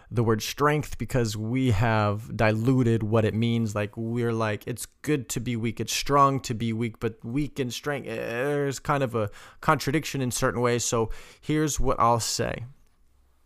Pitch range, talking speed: 95-130 Hz, 180 wpm